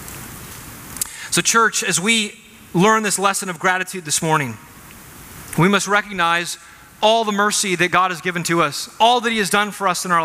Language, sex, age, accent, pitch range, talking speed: English, male, 30-49, American, 150-195 Hz, 185 wpm